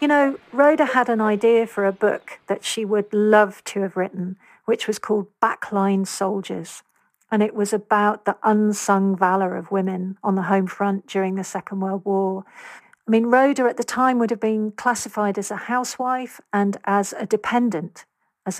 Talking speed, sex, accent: 185 wpm, female, British